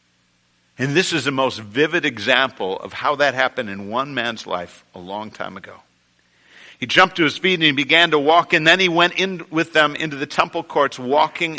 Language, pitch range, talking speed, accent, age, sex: English, 90-150 Hz, 210 wpm, American, 50-69, male